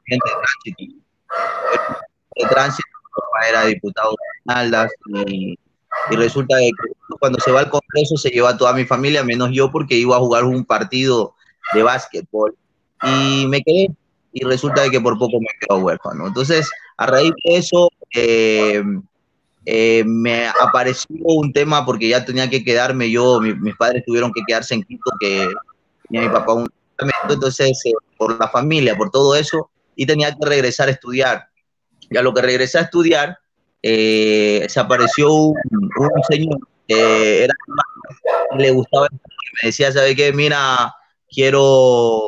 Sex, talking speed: male, 160 wpm